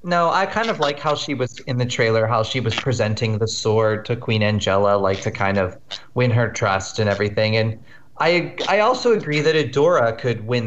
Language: English